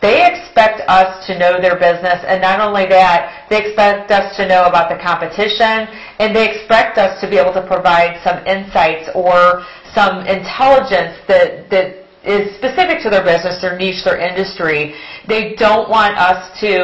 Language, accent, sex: English, American, female